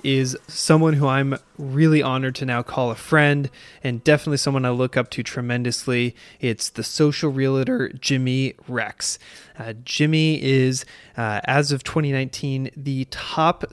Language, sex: English, male